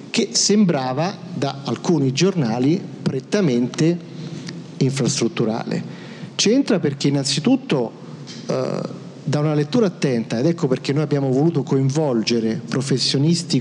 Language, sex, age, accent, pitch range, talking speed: Italian, male, 50-69, native, 125-165 Hz, 100 wpm